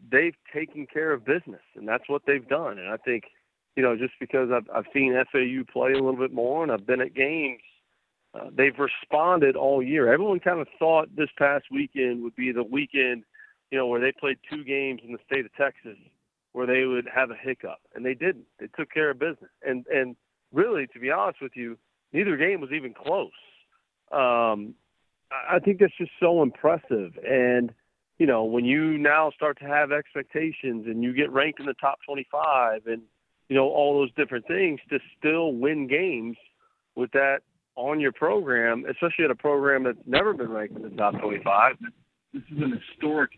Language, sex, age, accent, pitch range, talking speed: English, male, 40-59, American, 125-150 Hz, 200 wpm